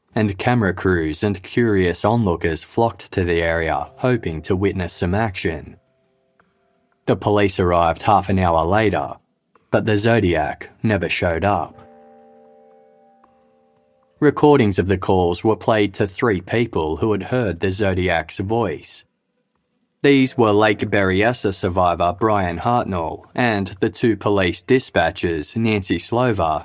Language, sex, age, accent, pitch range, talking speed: English, male, 20-39, Australian, 90-115 Hz, 130 wpm